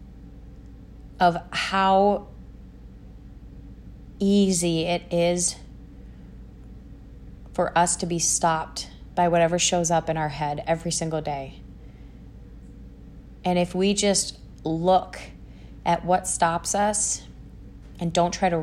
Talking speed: 105 wpm